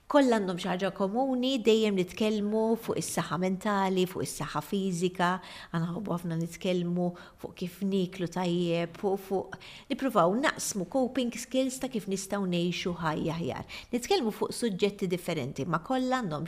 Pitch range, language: 165-215 Hz, English